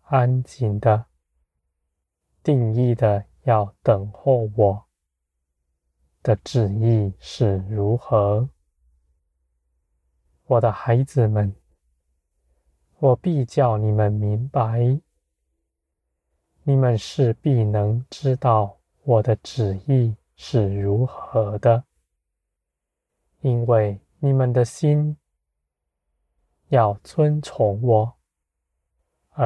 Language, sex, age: Chinese, male, 20-39